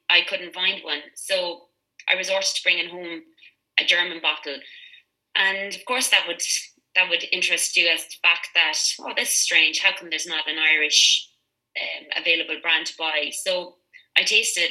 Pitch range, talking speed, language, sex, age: 165-190 Hz, 180 wpm, English, female, 20-39